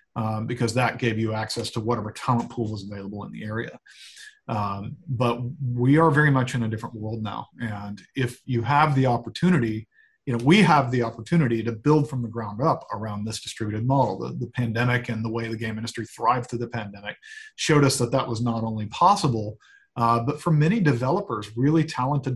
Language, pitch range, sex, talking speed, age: English, 115-150 Hz, male, 205 wpm, 40-59